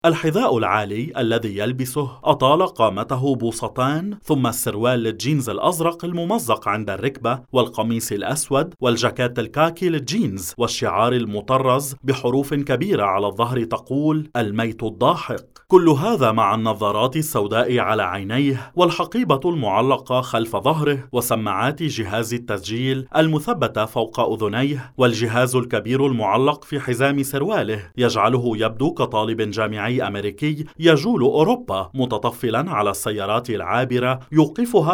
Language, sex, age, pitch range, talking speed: English, male, 30-49, 115-145 Hz, 110 wpm